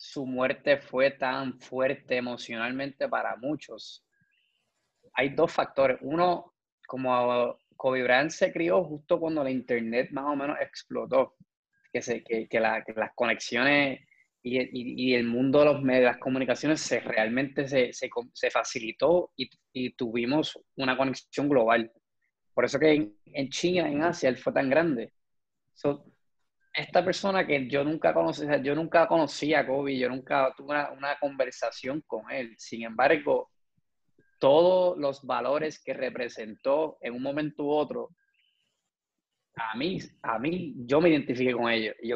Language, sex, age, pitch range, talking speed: Spanish, male, 20-39, 130-160 Hz, 155 wpm